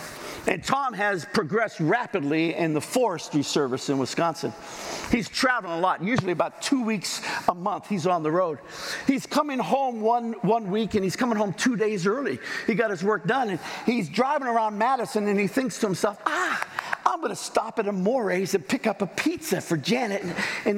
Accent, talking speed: American, 200 wpm